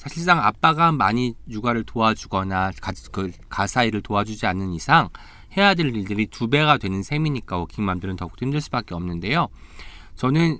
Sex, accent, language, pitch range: male, native, Korean, 105-155 Hz